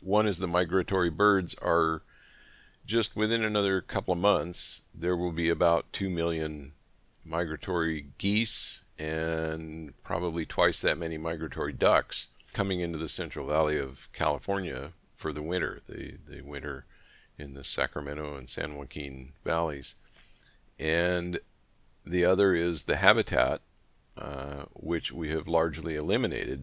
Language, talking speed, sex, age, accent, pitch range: English, 135 wpm, male, 50-69, American, 75-90 Hz